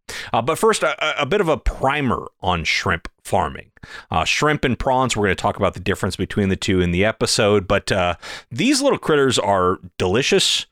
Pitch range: 95-130 Hz